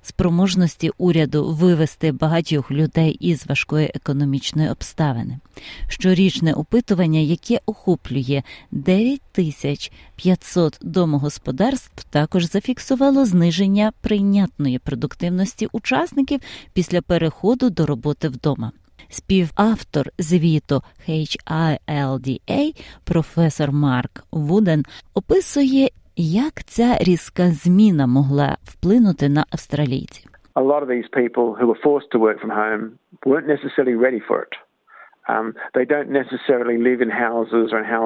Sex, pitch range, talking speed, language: female, 145-200 Hz, 65 wpm, Ukrainian